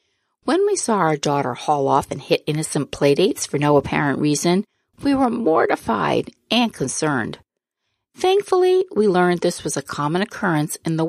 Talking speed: 160 wpm